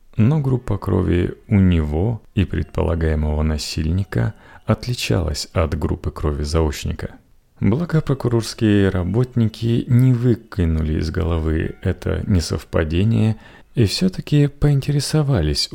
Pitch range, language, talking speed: 85-115 Hz, Russian, 90 wpm